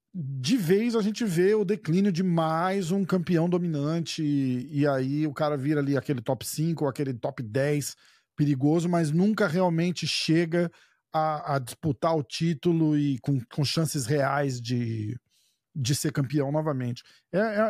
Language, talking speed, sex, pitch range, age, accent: Portuguese, 160 wpm, male, 150-200 Hz, 40-59, Brazilian